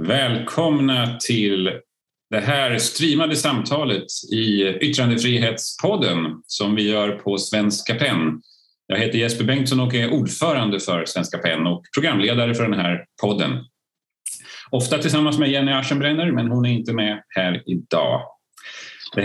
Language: Swedish